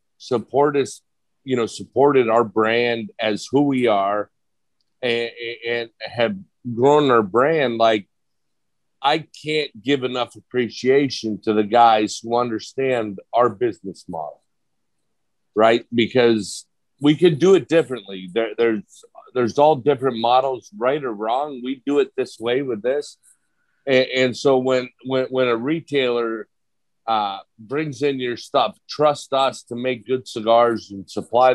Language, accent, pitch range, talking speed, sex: English, American, 115-140 Hz, 145 wpm, male